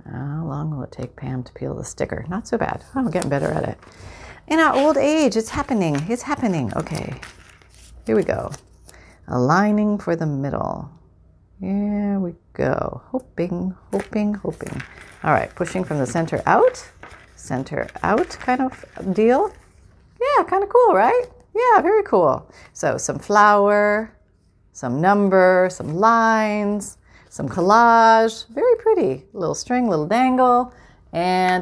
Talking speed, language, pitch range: 145 wpm, English, 145-220 Hz